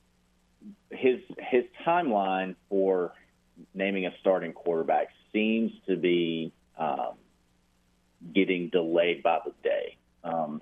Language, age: English, 30-49